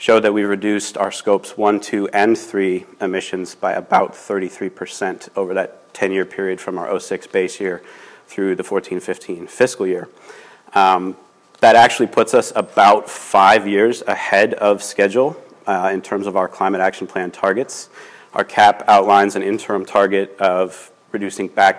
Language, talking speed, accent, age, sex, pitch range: English, 160 wpm, American, 30-49, male, 95-125 Hz